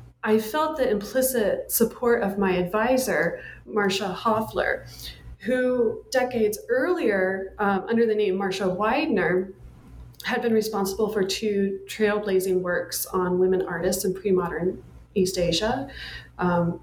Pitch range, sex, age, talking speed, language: 185-220 Hz, female, 30-49, 120 wpm, English